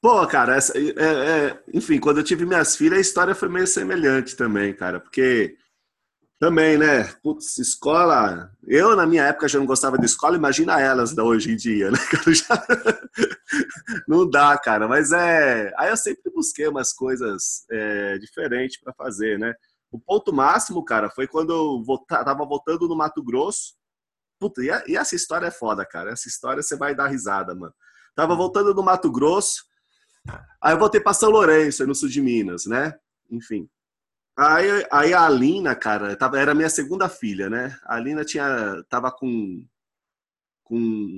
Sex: male